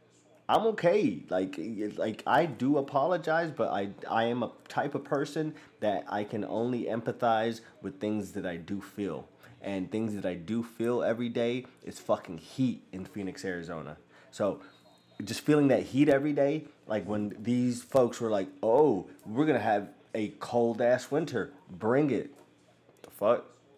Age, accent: 20-39, American